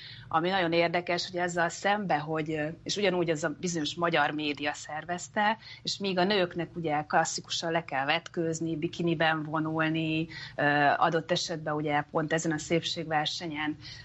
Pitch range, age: 150-170 Hz, 30-49